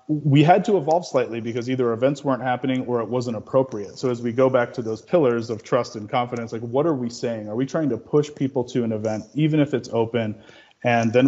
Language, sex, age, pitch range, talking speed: English, male, 30-49, 110-130 Hz, 245 wpm